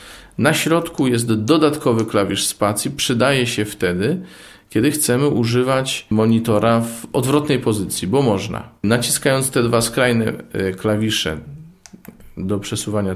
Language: Polish